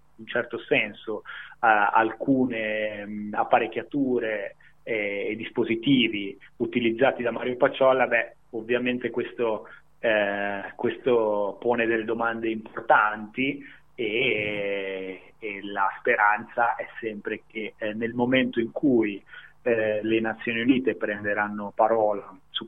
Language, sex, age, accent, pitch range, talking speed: Italian, male, 30-49, native, 105-120 Hz, 105 wpm